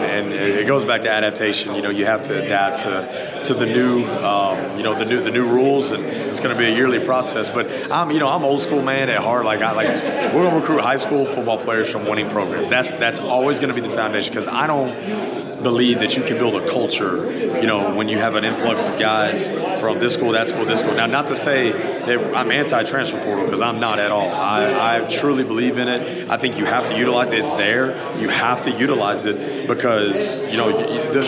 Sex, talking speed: male, 245 wpm